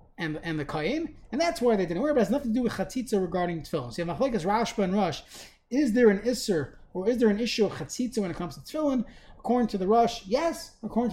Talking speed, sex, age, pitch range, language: 260 wpm, male, 30-49, 170-235 Hz, English